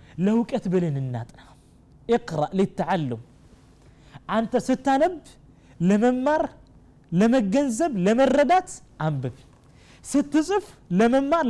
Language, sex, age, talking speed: Amharic, male, 30-49, 70 wpm